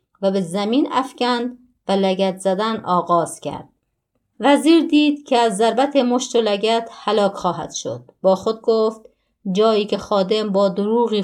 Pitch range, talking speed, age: 190-225 Hz, 150 wpm, 30-49